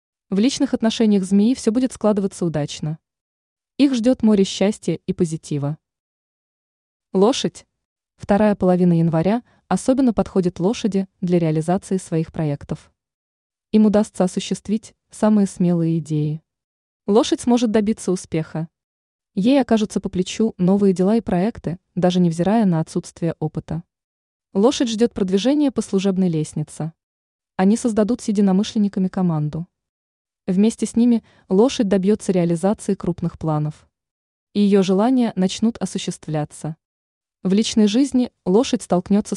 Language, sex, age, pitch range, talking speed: Russian, female, 20-39, 170-215 Hz, 115 wpm